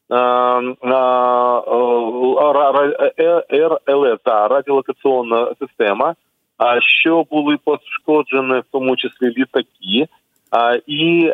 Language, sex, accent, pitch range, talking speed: Ukrainian, male, native, 120-150 Hz, 70 wpm